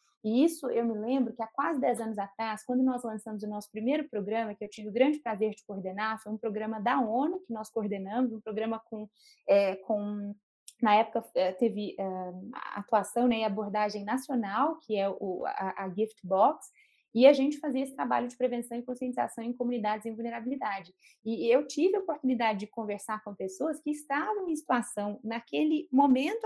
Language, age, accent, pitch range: Portuguese, 20-39, Brazilian, 210-270 Hz